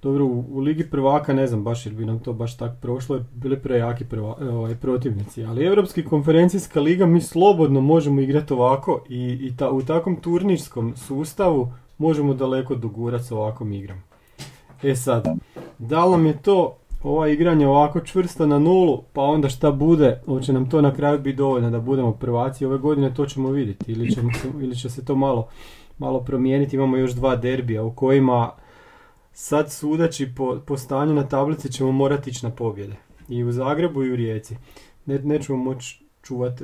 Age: 30-49